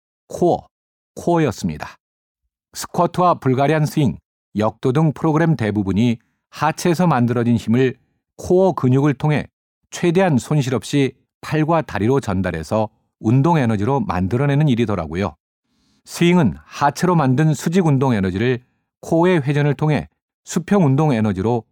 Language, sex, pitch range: Korean, male, 110-155 Hz